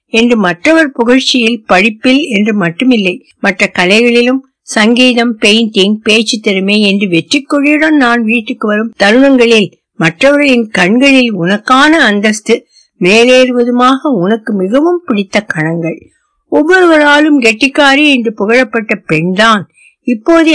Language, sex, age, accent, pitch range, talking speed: Tamil, female, 60-79, native, 190-270 Hz, 100 wpm